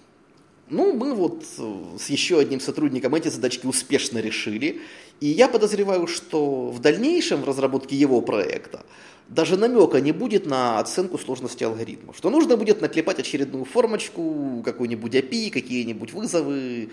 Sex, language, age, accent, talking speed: male, Ukrainian, 20-39, native, 140 wpm